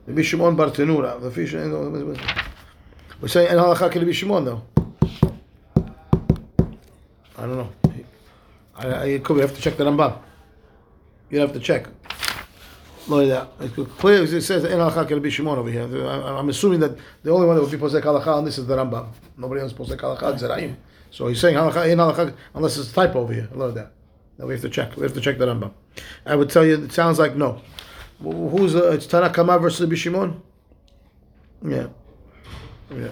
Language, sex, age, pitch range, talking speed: English, male, 30-49, 115-165 Hz, 185 wpm